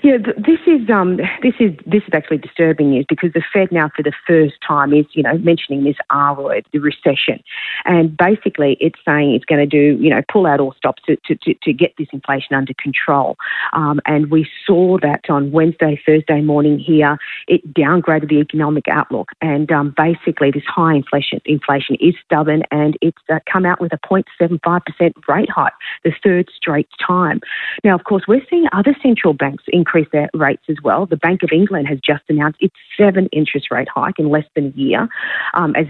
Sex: female